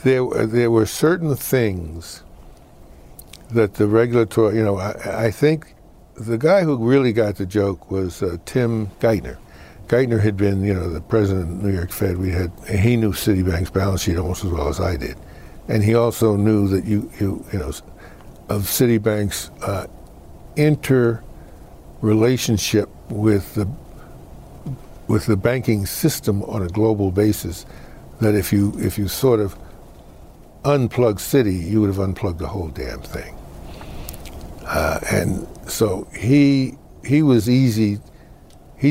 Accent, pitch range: American, 90-115 Hz